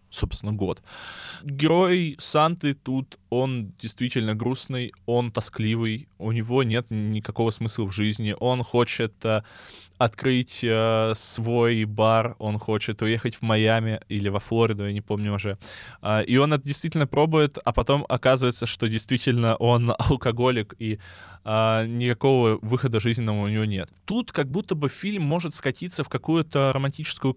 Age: 20-39